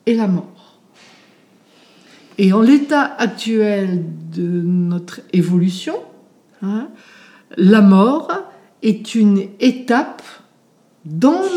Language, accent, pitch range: French, French, 200-255 Hz